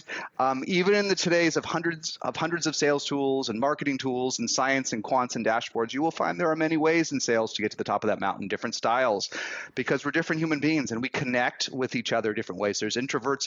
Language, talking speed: English, 245 wpm